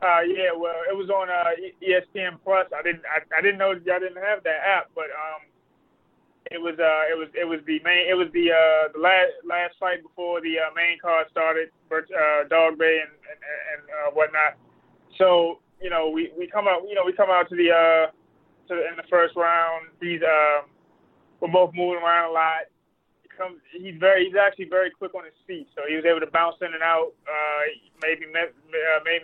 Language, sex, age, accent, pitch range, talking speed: English, male, 20-39, American, 160-180 Hz, 225 wpm